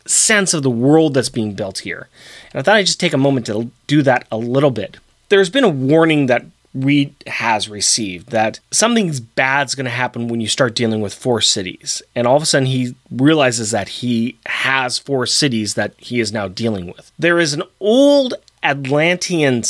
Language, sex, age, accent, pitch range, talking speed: English, male, 30-49, American, 115-155 Hz, 200 wpm